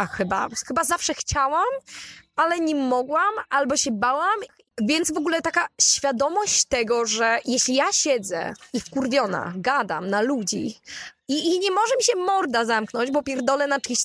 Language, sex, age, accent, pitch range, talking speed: Polish, female, 20-39, native, 230-290 Hz, 160 wpm